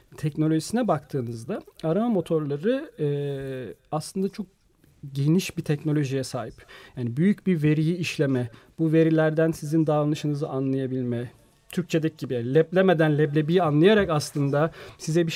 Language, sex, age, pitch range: Turkish, male, 40-59, 140-180 Hz